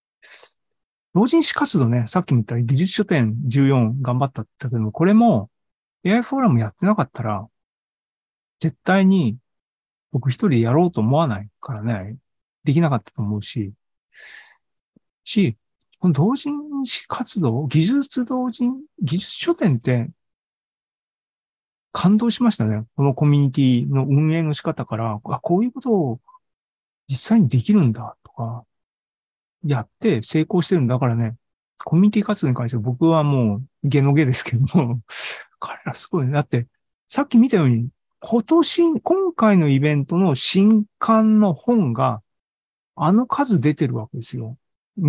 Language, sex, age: Japanese, male, 40-59